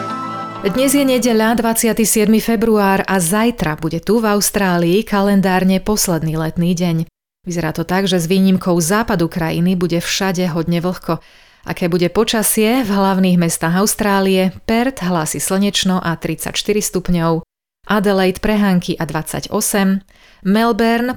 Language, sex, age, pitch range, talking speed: Slovak, female, 30-49, 170-210 Hz, 130 wpm